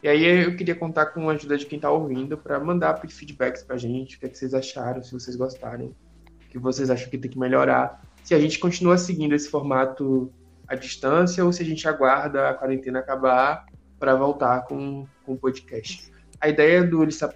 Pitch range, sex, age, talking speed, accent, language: 125-145 Hz, male, 20-39, 205 wpm, Brazilian, Portuguese